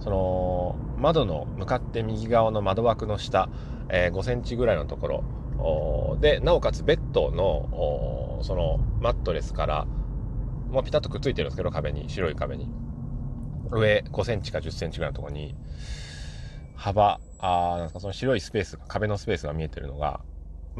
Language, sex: Japanese, male